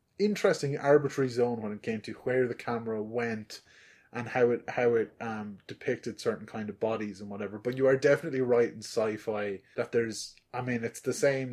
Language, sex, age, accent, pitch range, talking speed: English, male, 20-39, Irish, 105-125 Hz, 200 wpm